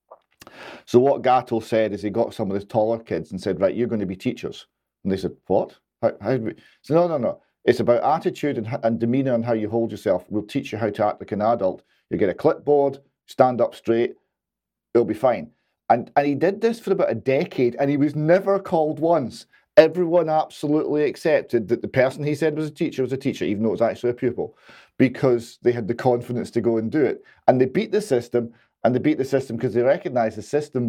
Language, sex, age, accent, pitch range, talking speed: English, male, 40-59, British, 115-145 Hz, 240 wpm